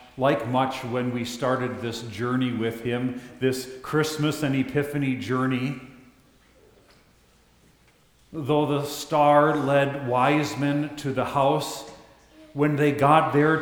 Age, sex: 40-59, male